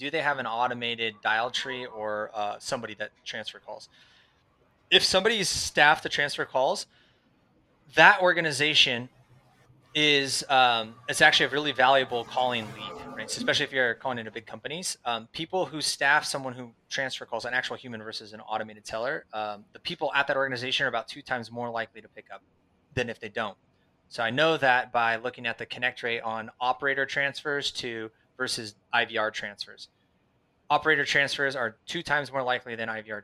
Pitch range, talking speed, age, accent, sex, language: 115-150 Hz, 180 wpm, 20-39, American, male, English